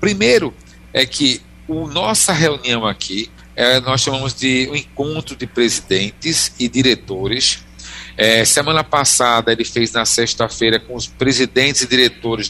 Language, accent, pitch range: Portuguese, Brazilian, 110-140 Hz